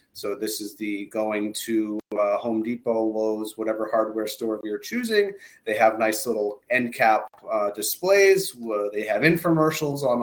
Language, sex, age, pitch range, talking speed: English, male, 30-49, 105-145 Hz, 160 wpm